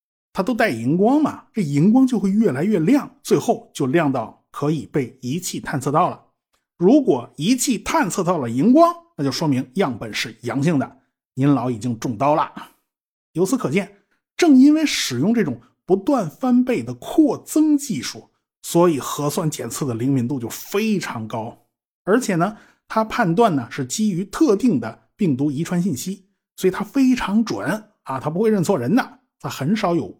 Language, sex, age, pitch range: Chinese, male, 50-69, 135-220 Hz